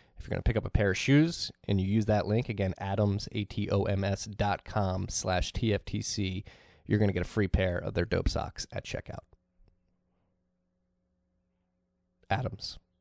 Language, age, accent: English, 20-39, American